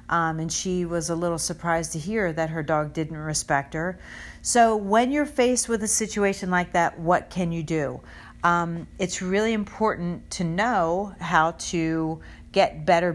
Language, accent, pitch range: English, American, 170-200 Hz